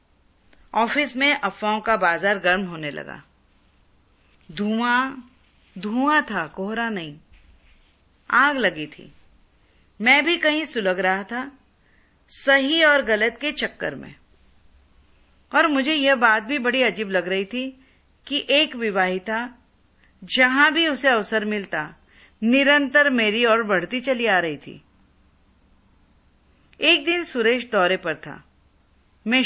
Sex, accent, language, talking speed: female, native, Hindi, 125 wpm